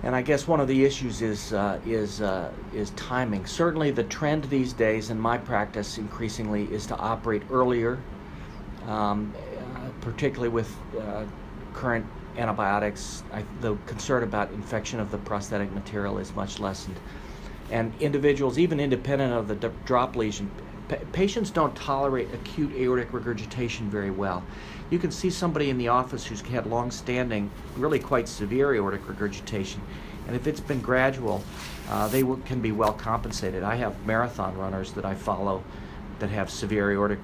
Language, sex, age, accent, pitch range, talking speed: English, male, 50-69, American, 100-125 Hz, 160 wpm